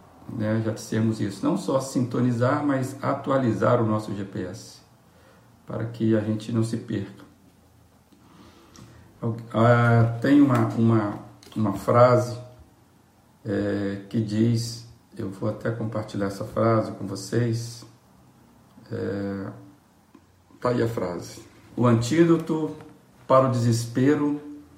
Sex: male